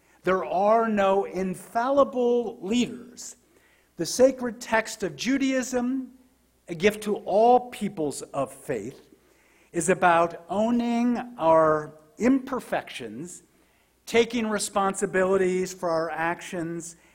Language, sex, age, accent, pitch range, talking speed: English, male, 50-69, American, 170-230 Hz, 95 wpm